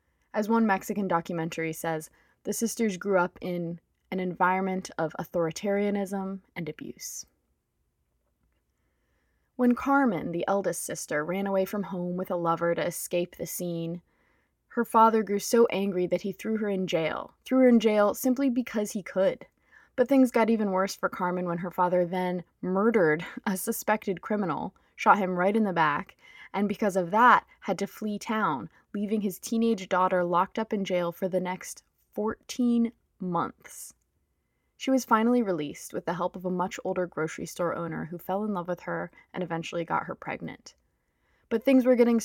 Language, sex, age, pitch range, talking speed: English, female, 20-39, 170-210 Hz, 175 wpm